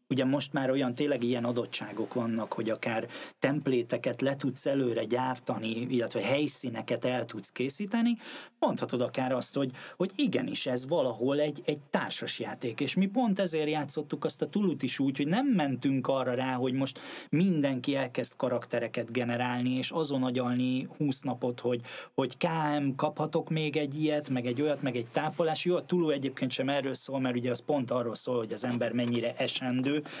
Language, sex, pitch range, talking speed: Hungarian, male, 125-155 Hz, 175 wpm